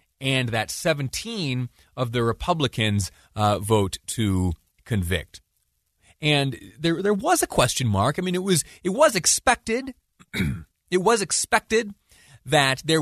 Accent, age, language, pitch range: American, 30-49, English, 110-150 Hz